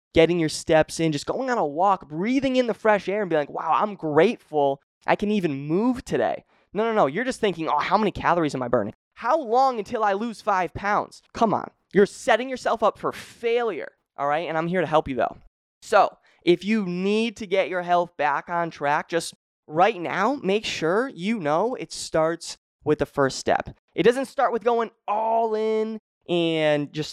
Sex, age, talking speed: male, 20-39, 210 wpm